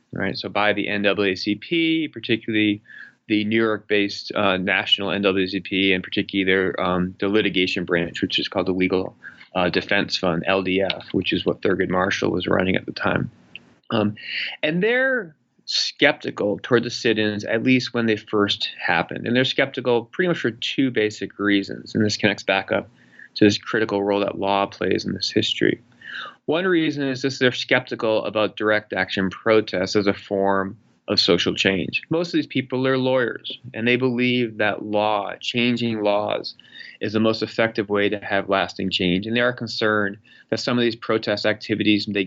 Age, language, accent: 30-49, English, American